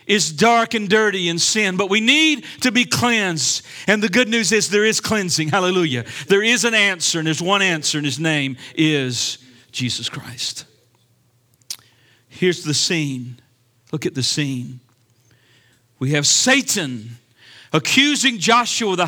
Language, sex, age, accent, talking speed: English, male, 50-69, American, 150 wpm